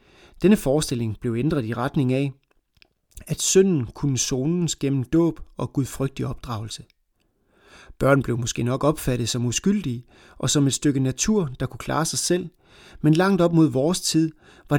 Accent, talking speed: native, 160 wpm